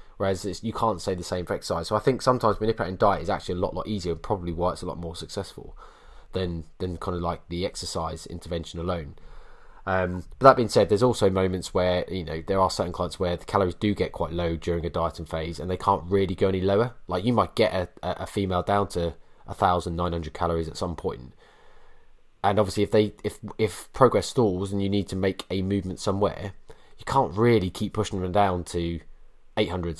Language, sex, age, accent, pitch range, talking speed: English, male, 20-39, British, 85-100 Hz, 225 wpm